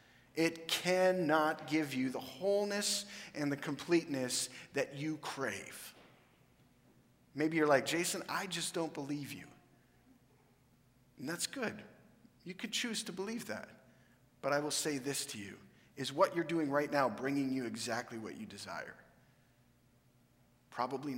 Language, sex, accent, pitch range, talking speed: English, male, American, 125-155 Hz, 140 wpm